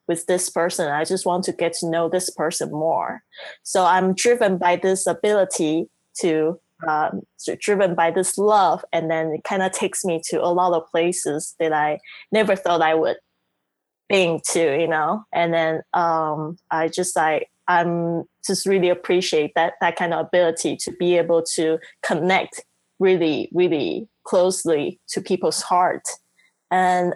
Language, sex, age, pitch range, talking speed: English, female, 20-39, 165-200 Hz, 165 wpm